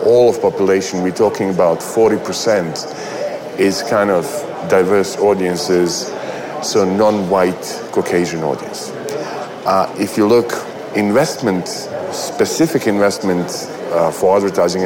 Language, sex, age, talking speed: English, male, 40-59, 105 wpm